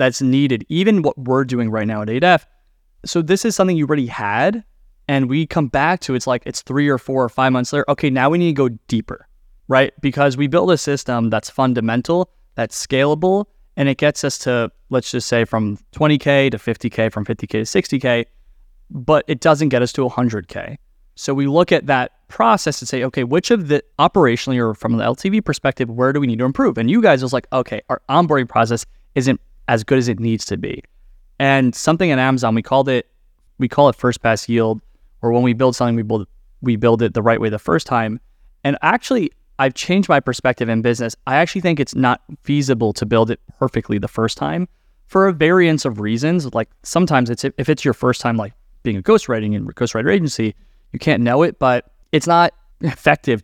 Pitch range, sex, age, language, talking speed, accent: 115-150 Hz, male, 20-39, English, 215 wpm, American